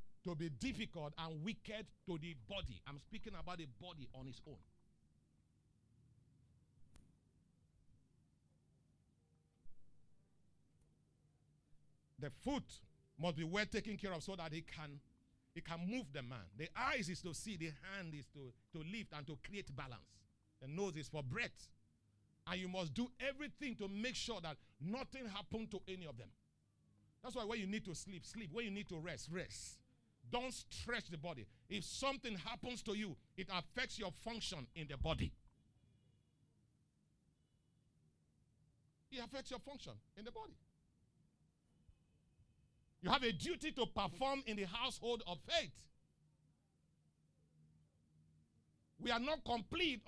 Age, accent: 50-69, Nigerian